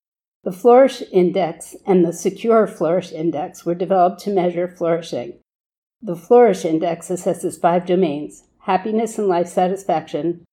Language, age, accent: English, 50-69, American